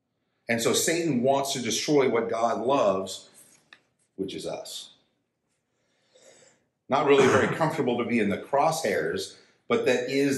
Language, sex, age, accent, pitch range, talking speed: English, male, 50-69, American, 110-150 Hz, 140 wpm